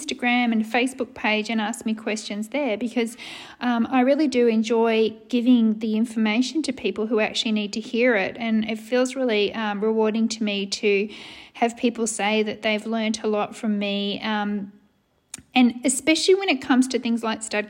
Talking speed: 185 wpm